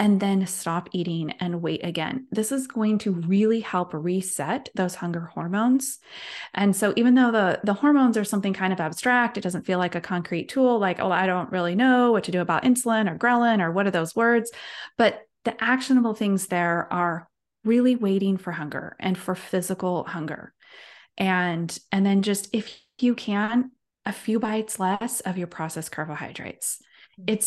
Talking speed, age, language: 185 wpm, 20-39, English